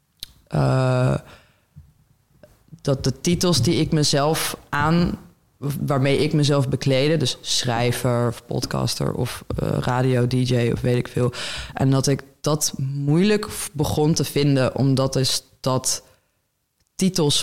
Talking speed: 125 wpm